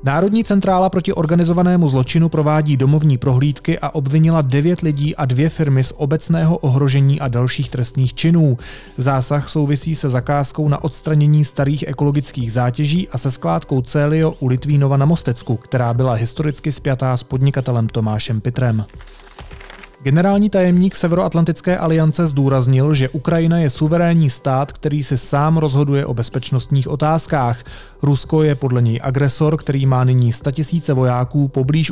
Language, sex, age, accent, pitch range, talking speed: Czech, male, 30-49, native, 130-155 Hz, 140 wpm